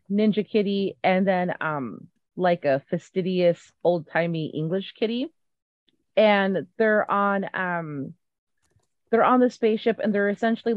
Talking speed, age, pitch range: 125 wpm, 30-49, 160-200 Hz